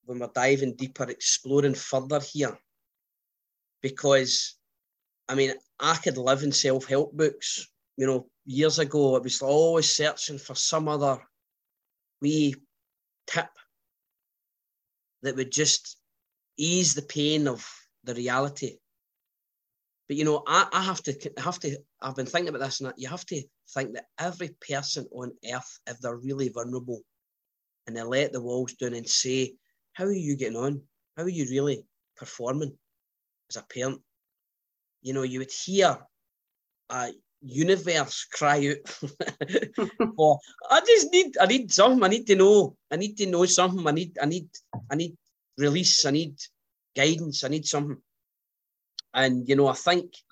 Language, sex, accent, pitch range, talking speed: English, male, British, 130-155 Hz, 150 wpm